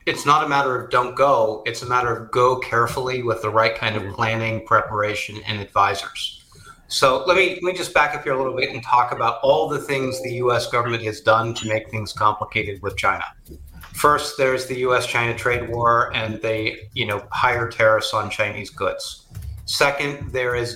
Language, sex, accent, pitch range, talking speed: English, male, American, 110-130 Hz, 200 wpm